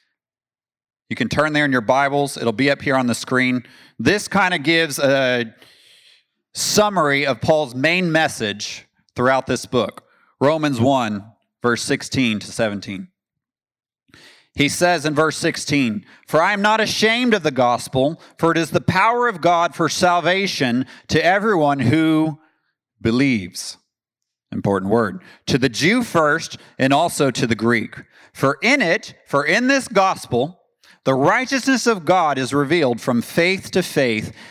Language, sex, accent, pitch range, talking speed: English, male, American, 125-175 Hz, 150 wpm